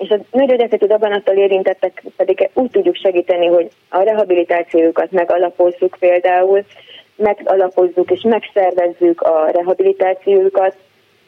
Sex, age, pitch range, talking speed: female, 20-39, 175-190 Hz, 100 wpm